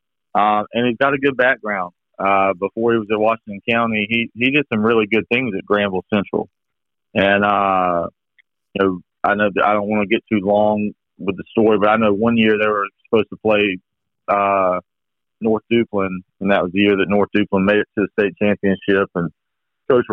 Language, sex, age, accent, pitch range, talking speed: English, male, 40-59, American, 95-110 Hz, 210 wpm